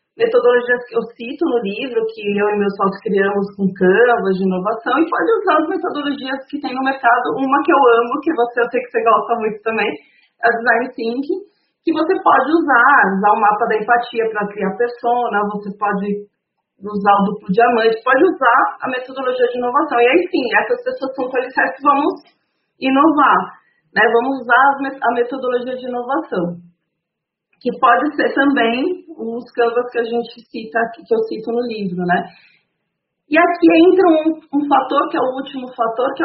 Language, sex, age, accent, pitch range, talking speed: Portuguese, female, 40-59, Brazilian, 220-280 Hz, 180 wpm